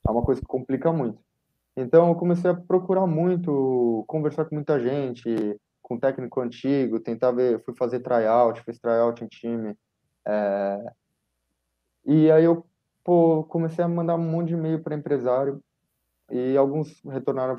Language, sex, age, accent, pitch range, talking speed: Portuguese, male, 20-39, Brazilian, 110-145 Hz, 155 wpm